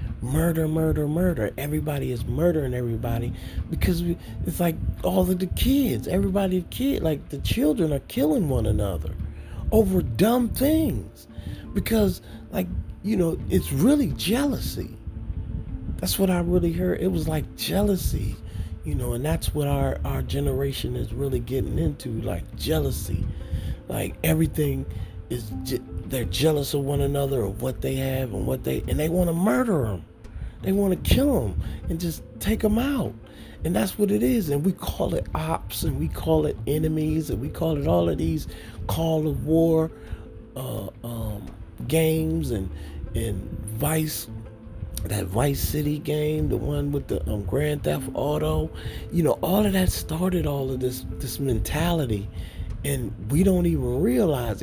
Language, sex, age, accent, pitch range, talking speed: English, male, 40-59, American, 100-160 Hz, 160 wpm